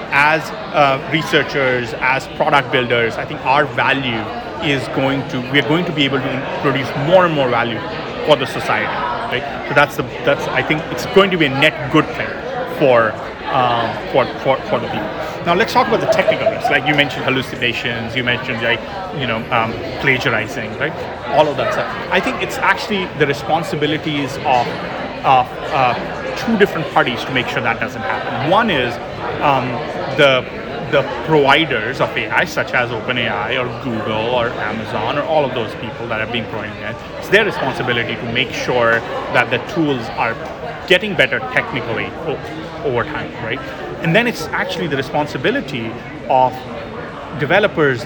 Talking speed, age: 170 wpm, 30-49